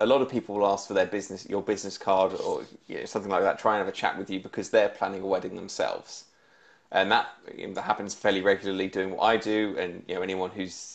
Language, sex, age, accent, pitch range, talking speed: English, male, 20-39, British, 95-125 Hz, 265 wpm